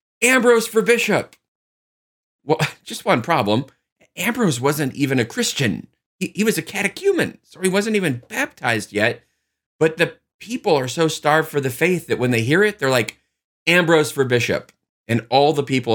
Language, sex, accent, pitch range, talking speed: English, male, American, 110-160 Hz, 175 wpm